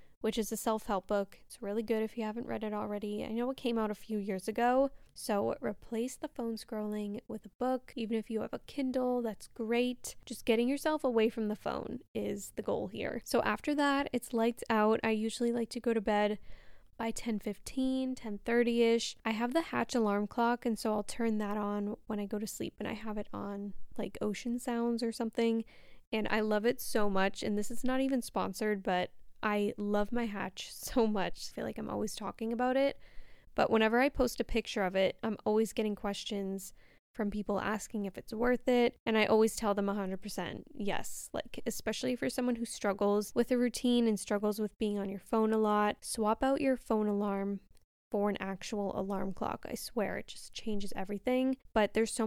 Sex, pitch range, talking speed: female, 210-240 Hz, 215 wpm